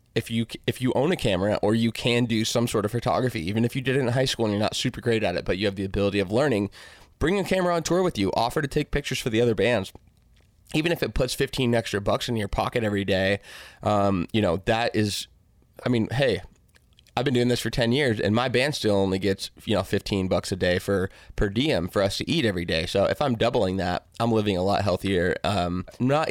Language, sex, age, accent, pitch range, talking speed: English, male, 20-39, American, 100-125 Hz, 255 wpm